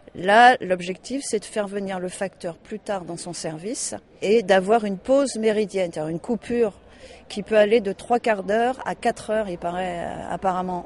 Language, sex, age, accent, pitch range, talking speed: French, female, 40-59, French, 185-230 Hz, 190 wpm